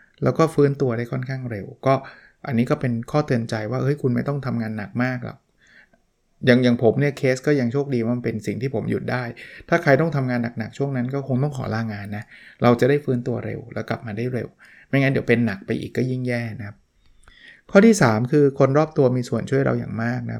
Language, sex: Thai, male